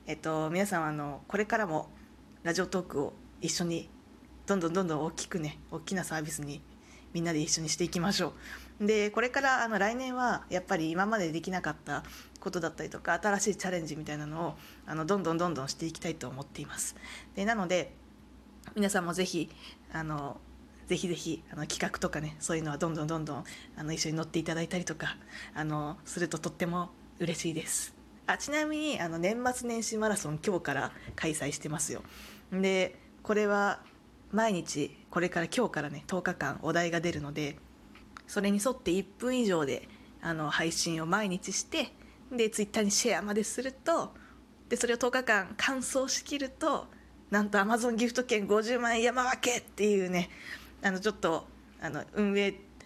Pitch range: 160-215 Hz